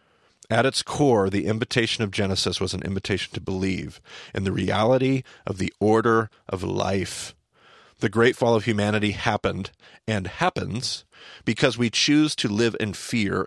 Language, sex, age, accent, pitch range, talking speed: English, male, 40-59, American, 100-120 Hz, 155 wpm